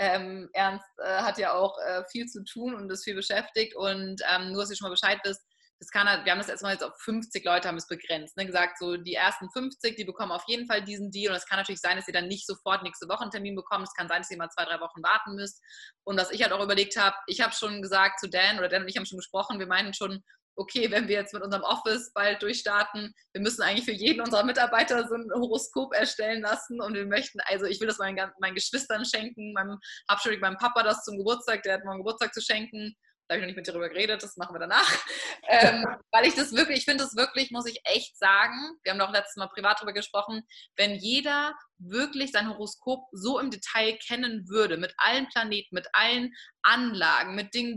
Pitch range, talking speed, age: 195-235 Hz, 240 wpm, 20-39